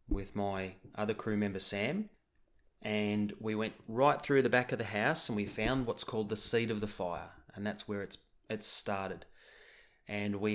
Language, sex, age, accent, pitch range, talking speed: English, male, 30-49, Australian, 105-130 Hz, 195 wpm